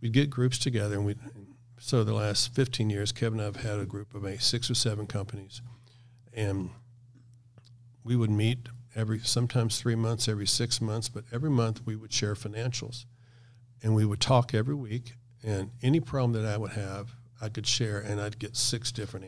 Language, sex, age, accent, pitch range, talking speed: English, male, 50-69, American, 105-120 Hz, 195 wpm